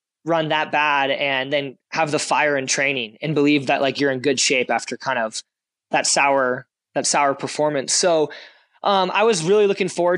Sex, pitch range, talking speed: male, 145-180 Hz, 195 wpm